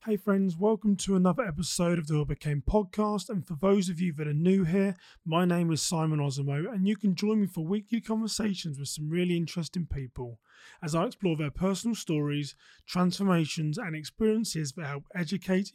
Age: 30-49